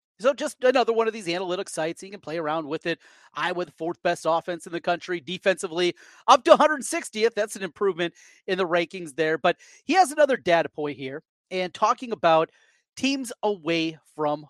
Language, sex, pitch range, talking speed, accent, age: English, male, 170-245 Hz, 190 wpm, American, 30-49